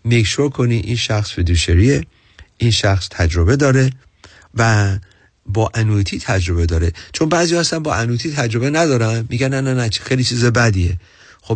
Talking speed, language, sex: 155 wpm, Persian, male